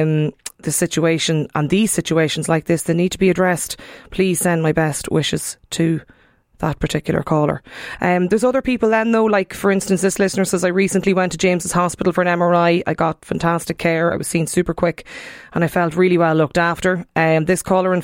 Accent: Irish